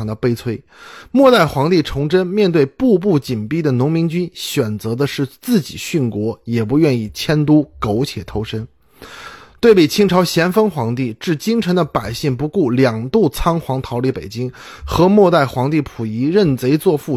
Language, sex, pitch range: Chinese, male, 120-185 Hz